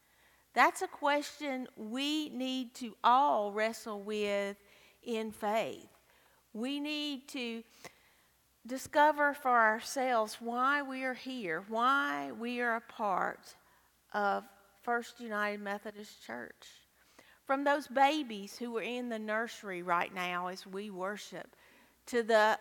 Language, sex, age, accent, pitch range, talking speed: English, female, 50-69, American, 200-260 Hz, 120 wpm